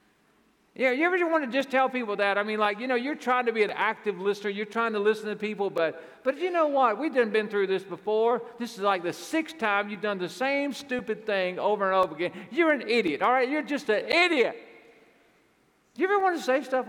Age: 50-69